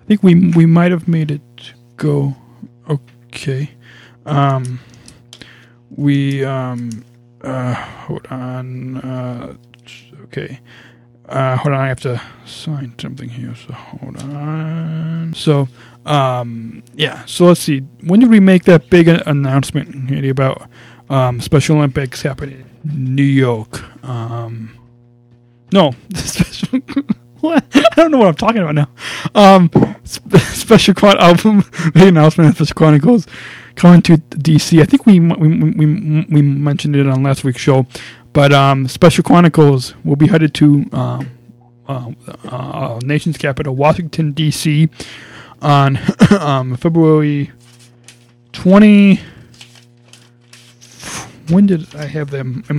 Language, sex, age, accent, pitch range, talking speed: English, male, 20-39, American, 120-160 Hz, 130 wpm